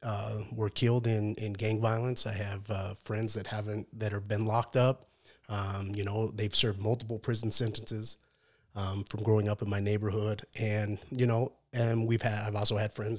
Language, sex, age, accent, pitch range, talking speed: English, male, 30-49, American, 105-120 Hz, 195 wpm